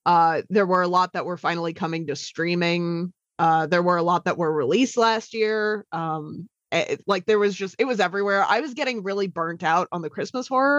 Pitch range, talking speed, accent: 170-245 Hz, 220 wpm, American